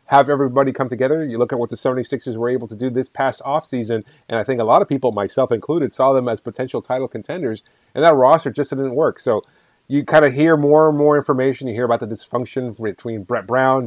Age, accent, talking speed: 30-49, American, 240 wpm